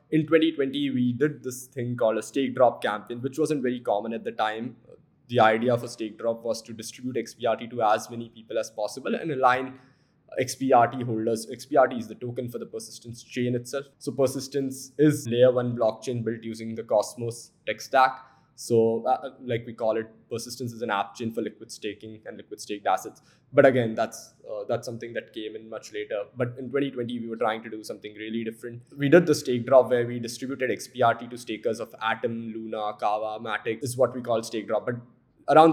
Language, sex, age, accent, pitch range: Chinese, male, 10-29, Indian, 115-130 Hz